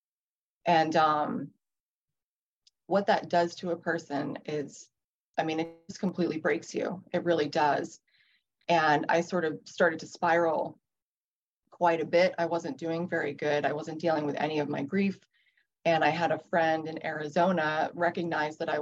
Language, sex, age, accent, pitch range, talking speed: English, female, 30-49, American, 160-180 Hz, 165 wpm